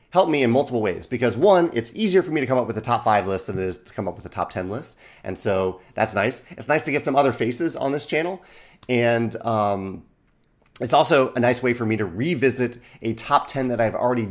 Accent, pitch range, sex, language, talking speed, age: American, 95-130 Hz, male, English, 255 wpm, 30-49